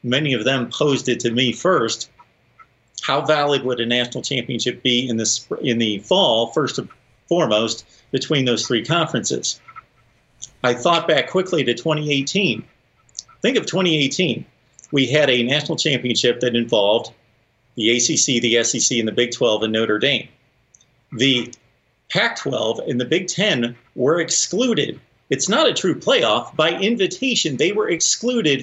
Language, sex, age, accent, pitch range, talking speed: English, male, 40-59, American, 120-160 Hz, 155 wpm